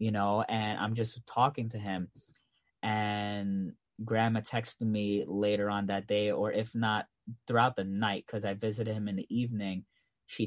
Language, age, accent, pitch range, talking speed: English, 20-39, American, 95-110 Hz, 170 wpm